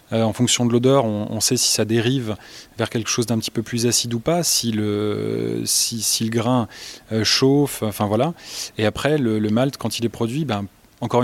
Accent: French